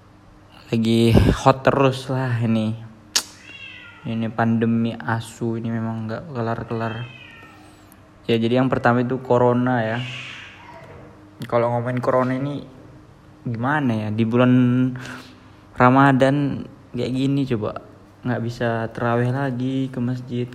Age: 20-39